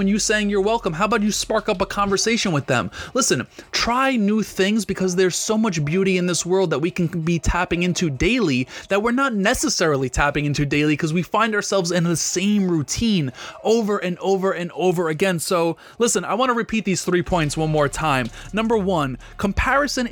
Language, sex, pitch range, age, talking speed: English, male, 160-205 Hz, 20-39, 205 wpm